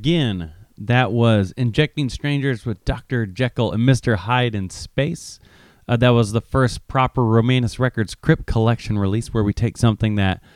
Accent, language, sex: American, English, male